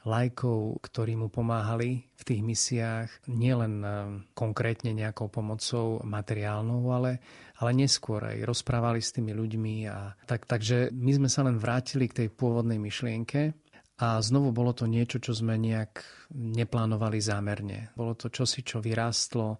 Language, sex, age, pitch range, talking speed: Slovak, male, 40-59, 110-125 Hz, 140 wpm